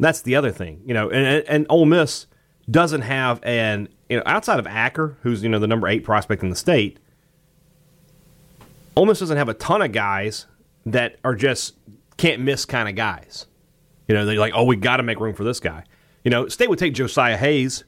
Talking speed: 210 wpm